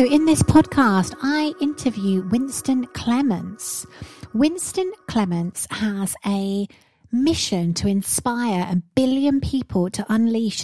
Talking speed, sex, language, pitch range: 115 wpm, female, English, 185-230 Hz